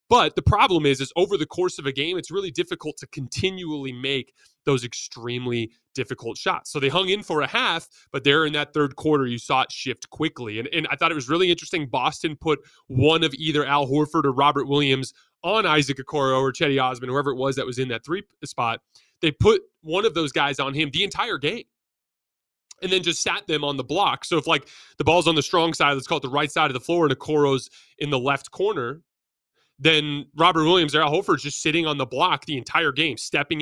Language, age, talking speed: English, 20-39, 235 wpm